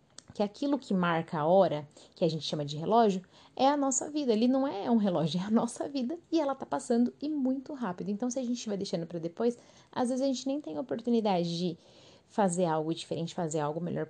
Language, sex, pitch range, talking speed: Portuguese, female, 175-235 Hz, 230 wpm